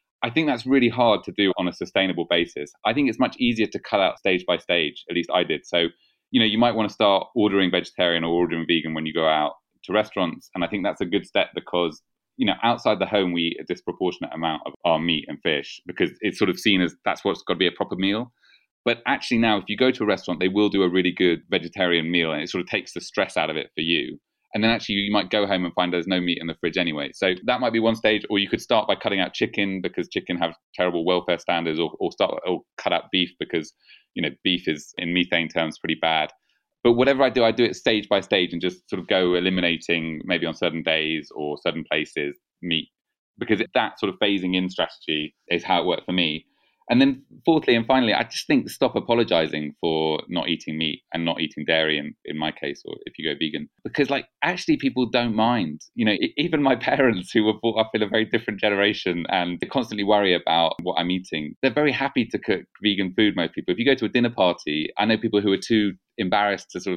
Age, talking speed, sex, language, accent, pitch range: 30-49, 250 wpm, male, English, British, 85-110 Hz